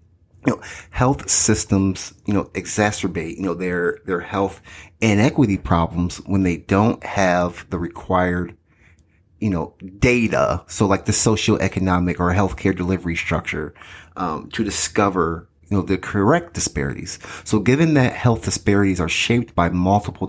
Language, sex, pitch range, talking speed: English, male, 90-105 Hz, 140 wpm